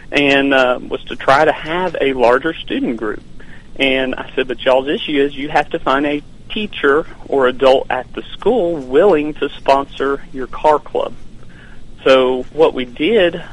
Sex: male